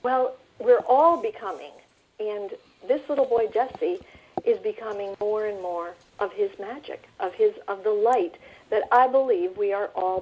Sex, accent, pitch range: female, American, 195-280 Hz